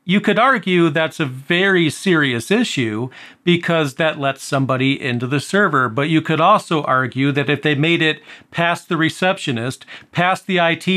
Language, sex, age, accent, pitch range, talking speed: English, male, 40-59, American, 135-165 Hz, 170 wpm